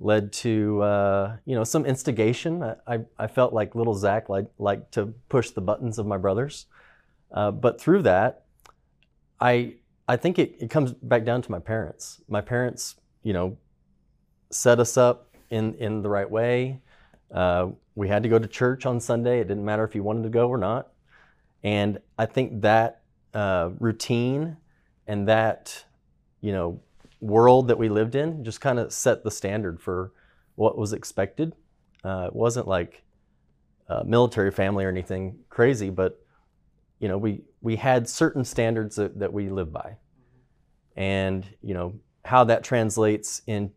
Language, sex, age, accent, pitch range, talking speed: English, male, 30-49, American, 95-120 Hz, 170 wpm